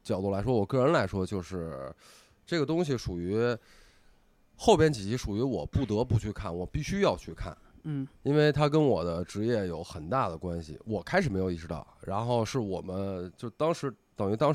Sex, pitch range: male, 95-140 Hz